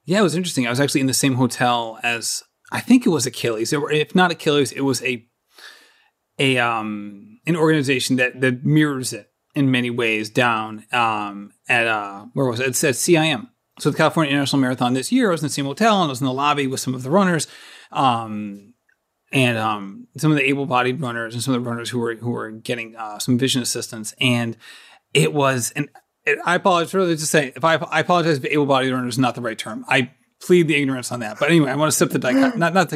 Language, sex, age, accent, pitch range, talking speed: English, male, 30-49, American, 120-150 Hz, 235 wpm